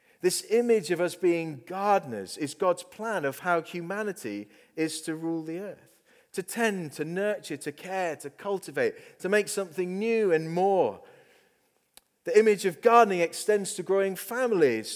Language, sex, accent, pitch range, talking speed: English, male, British, 160-220 Hz, 155 wpm